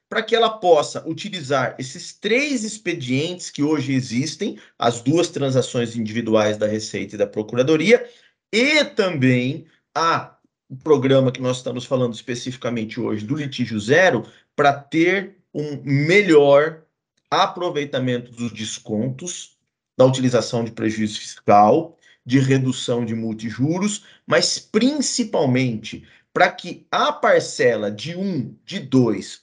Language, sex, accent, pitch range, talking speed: Portuguese, male, Brazilian, 125-180 Hz, 120 wpm